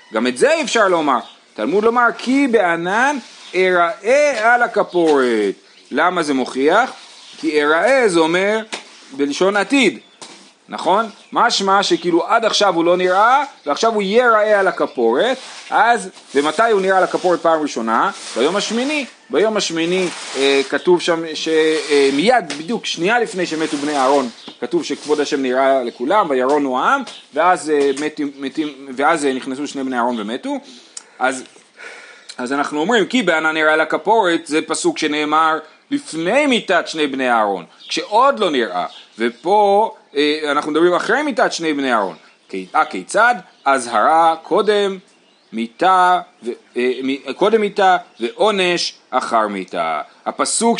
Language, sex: Hebrew, male